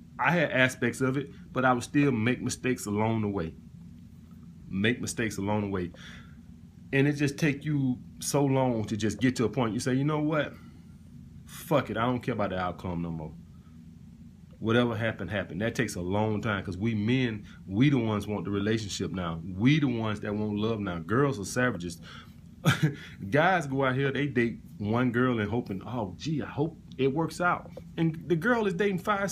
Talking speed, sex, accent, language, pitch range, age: 200 wpm, male, American, English, 100-140 Hz, 30-49